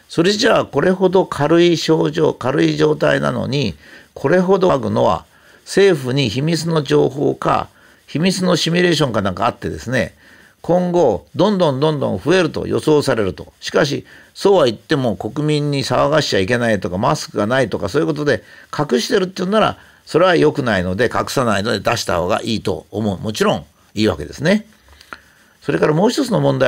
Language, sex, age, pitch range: Japanese, male, 50-69, 110-165 Hz